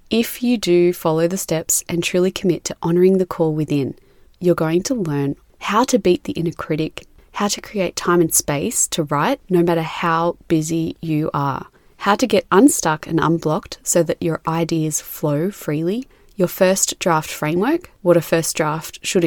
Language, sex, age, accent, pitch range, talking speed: English, female, 20-39, Australian, 160-190 Hz, 185 wpm